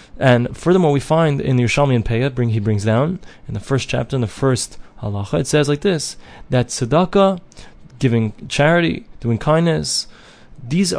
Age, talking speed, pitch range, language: 20-39, 175 wpm, 120-155 Hz, English